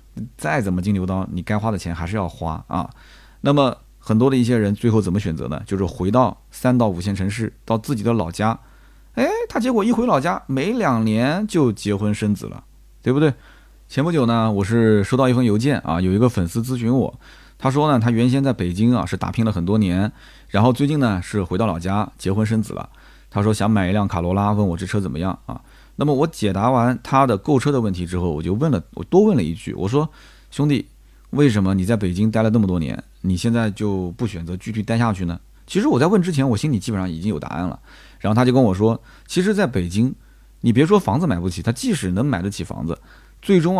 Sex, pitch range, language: male, 95-130 Hz, Chinese